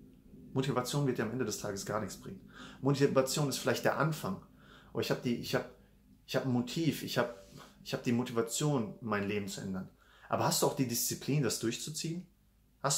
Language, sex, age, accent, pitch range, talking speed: English, male, 30-49, German, 115-145 Hz, 200 wpm